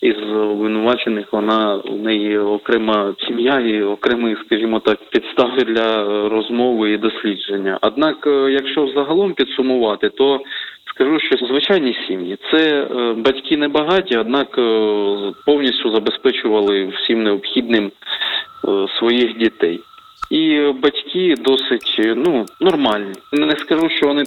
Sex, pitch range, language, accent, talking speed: male, 105-145 Hz, Ukrainian, native, 105 wpm